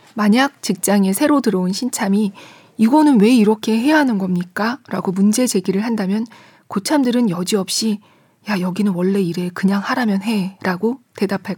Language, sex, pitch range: Korean, female, 185-230 Hz